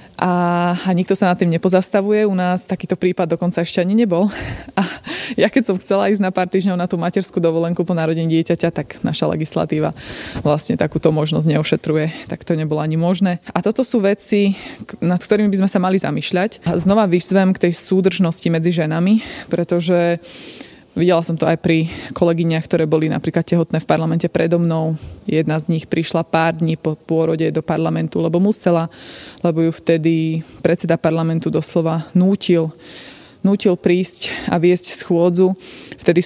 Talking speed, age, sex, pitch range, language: 165 wpm, 20-39, female, 165-185 Hz, Slovak